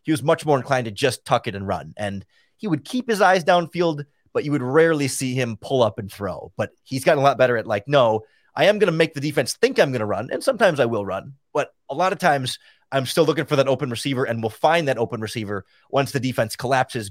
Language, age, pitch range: English, 30-49, 115-160 Hz